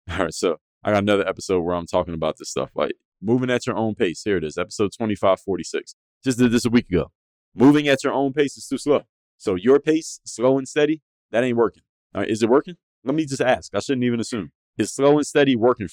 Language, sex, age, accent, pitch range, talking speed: English, male, 30-49, American, 100-135 Hz, 235 wpm